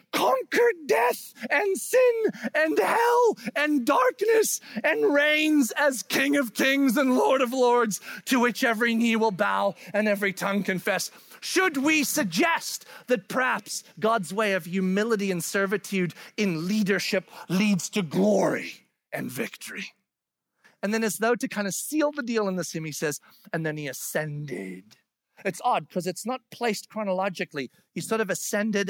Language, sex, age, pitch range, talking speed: English, male, 40-59, 175-250 Hz, 160 wpm